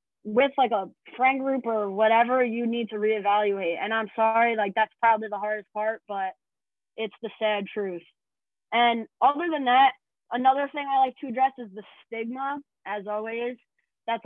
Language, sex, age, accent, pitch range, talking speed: English, female, 20-39, American, 220-260 Hz, 175 wpm